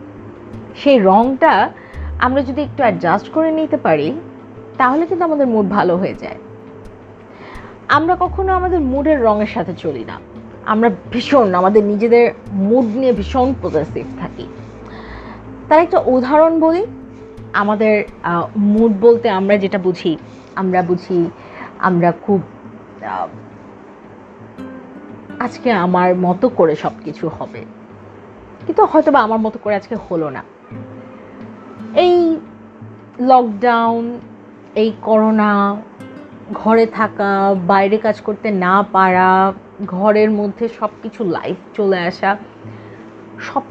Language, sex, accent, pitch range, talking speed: Bengali, female, native, 185-250 Hz, 110 wpm